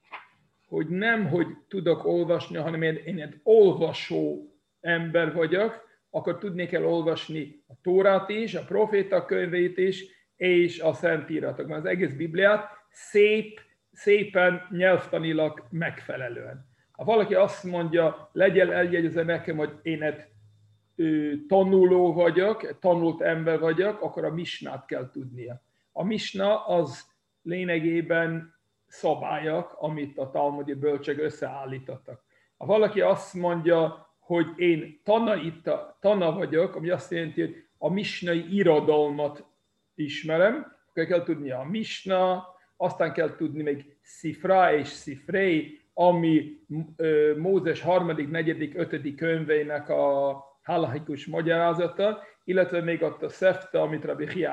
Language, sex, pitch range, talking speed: Hungarian, male, 155-185 Hz, 120 wpm